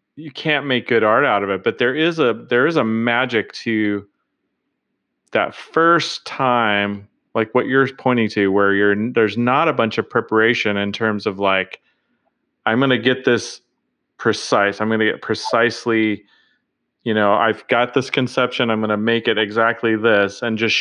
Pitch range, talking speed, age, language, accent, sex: 105-130 Hz, 180 wpm, 30-49, English, American, male